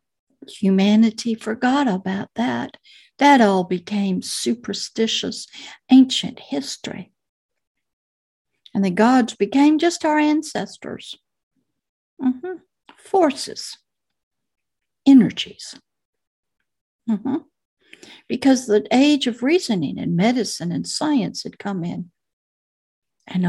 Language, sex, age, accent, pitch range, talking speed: English, female, 60-79, American, 200-275 Hz, 90 wpm